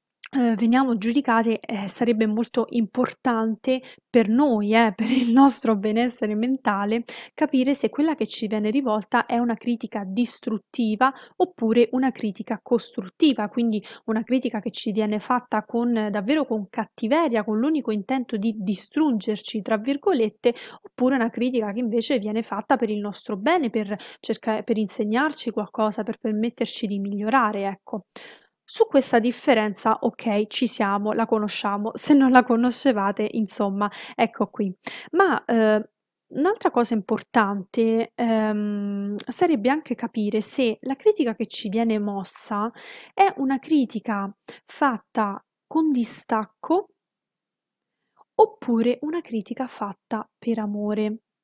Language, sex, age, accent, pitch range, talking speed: Italian, female, 20-39, native, 215-255 Hz, 130 wpm